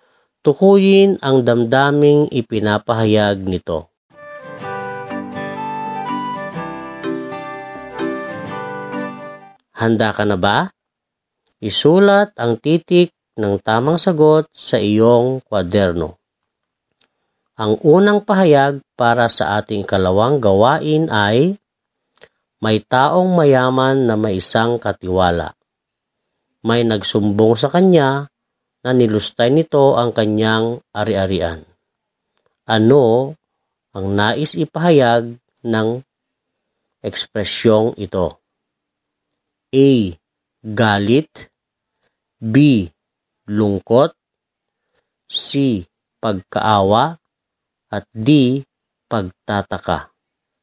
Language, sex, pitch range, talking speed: Filipino, female, 100-140 Hz, 70 wpm